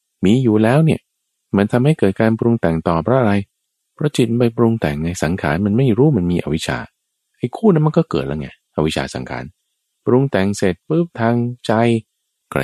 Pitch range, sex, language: 70-115 Hz, male, Thai